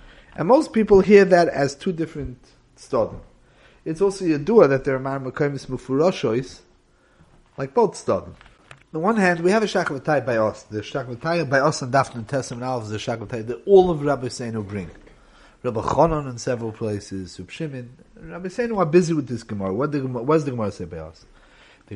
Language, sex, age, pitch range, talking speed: English, male, 30-49, 115-170 Hz, 185 wpm